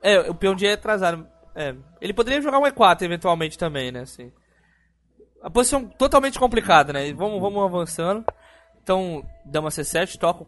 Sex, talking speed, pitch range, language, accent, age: male, 180 wpm, 150-205 Hz, Portuguese, Brazilian, 20-39